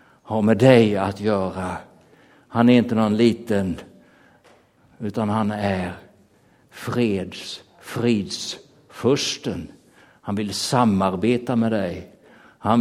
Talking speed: 100 wpm